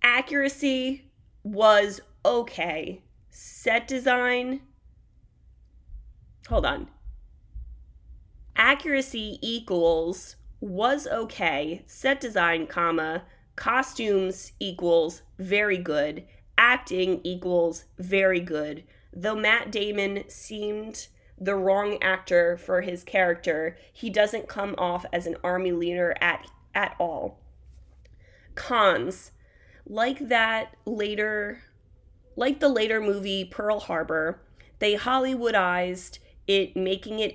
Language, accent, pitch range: English, American, 175-215 Hz